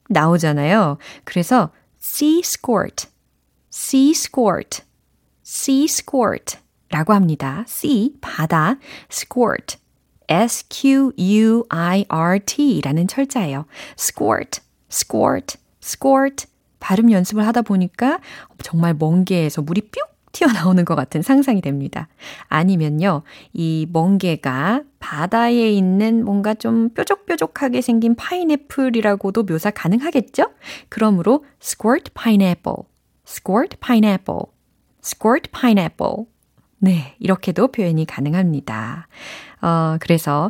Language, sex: Korean, female